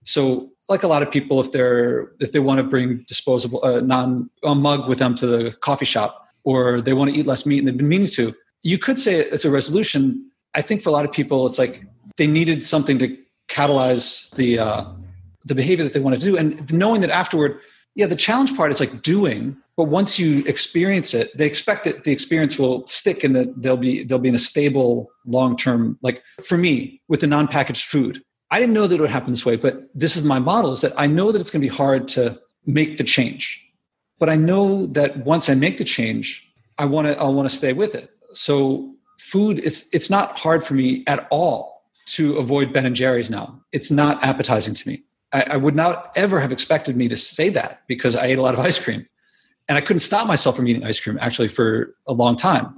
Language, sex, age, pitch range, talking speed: English, male, 40-59, 125-160 Hz, 235 wpm